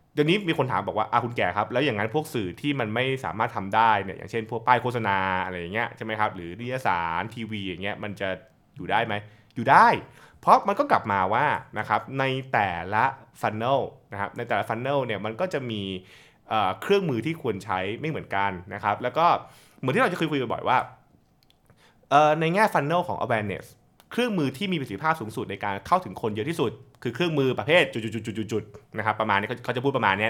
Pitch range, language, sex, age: 105-145 Hz, Thai, male, 20-39